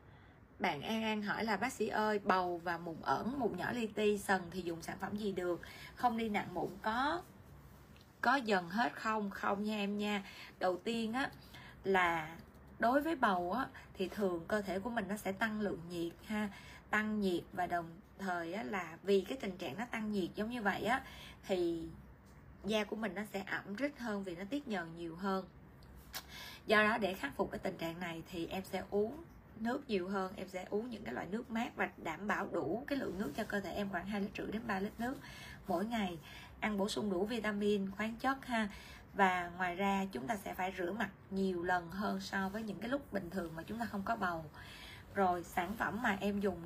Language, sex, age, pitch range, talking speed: Vietnamese, female, 20-39, 180-215 Hz, 220 wpm